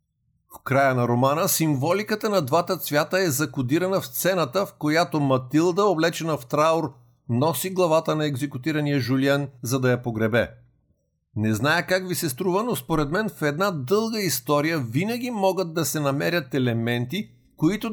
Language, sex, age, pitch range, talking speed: Bulgarian, male, 50-69, 130-180 Hz, 155 wpm